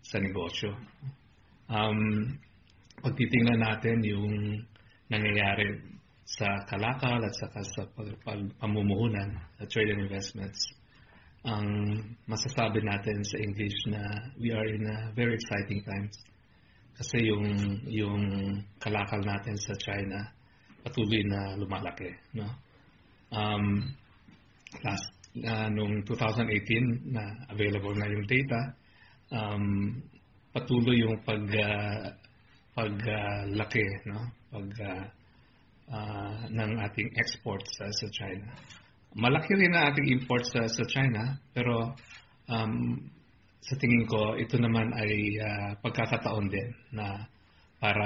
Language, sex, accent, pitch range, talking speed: Filipino, male, native, 100-115 Hz, 110 wpm